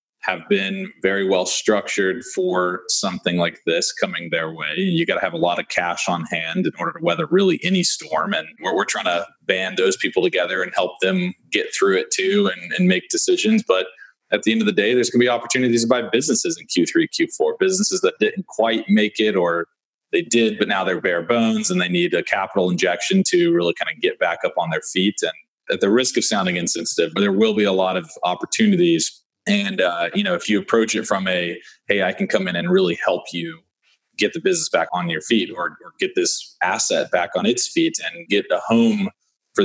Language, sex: English, male